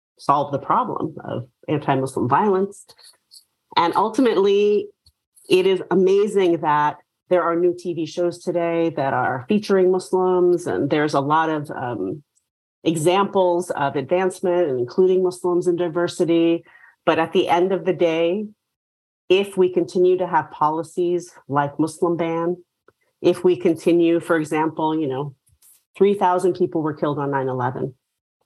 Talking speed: 135 wpm